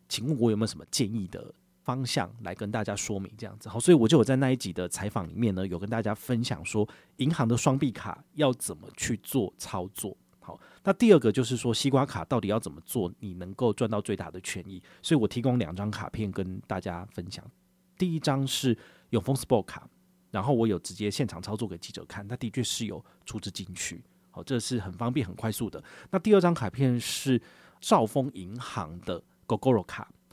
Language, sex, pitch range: Chinese, male, 105-135 Hz